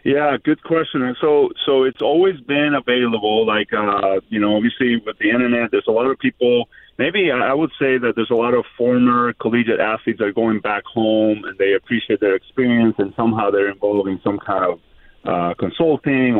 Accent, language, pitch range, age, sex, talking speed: American, English, 100-125 Hz, 40-59, male, 205 wpm